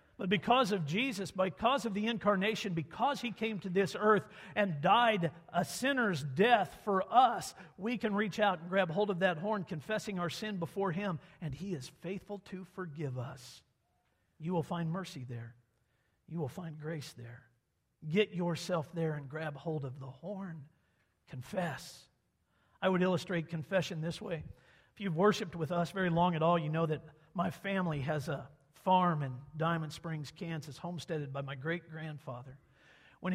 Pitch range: 155-200 Hz